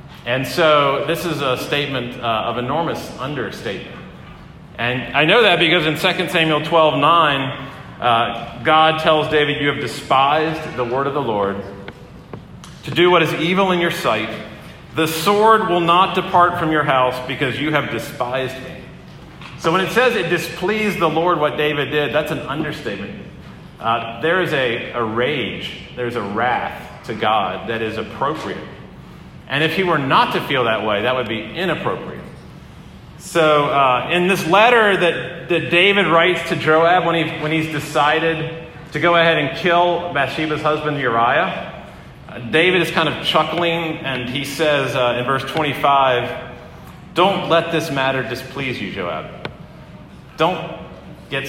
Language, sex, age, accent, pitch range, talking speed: English, male, 40-59, American, 130-165 Hz, 165 wpm